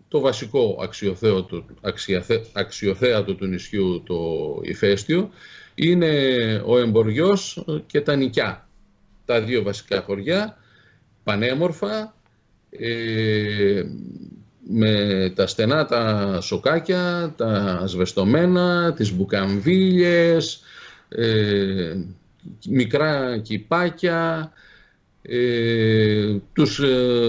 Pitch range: 110-150 Hz